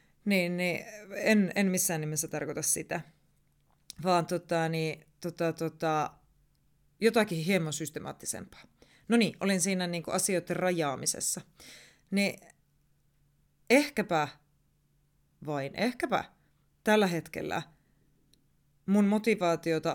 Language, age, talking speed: Finnish, 30-49, 95 wpm